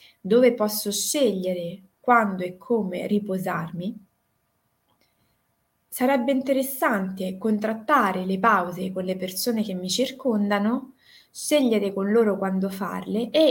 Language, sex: Italian, female